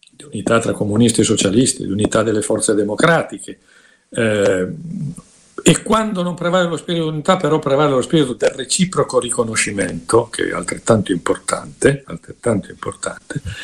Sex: male